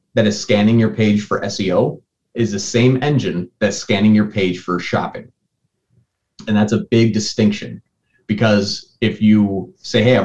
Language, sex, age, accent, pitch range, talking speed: English, male, 30-49, American, 100-115 Hz, 160 wpm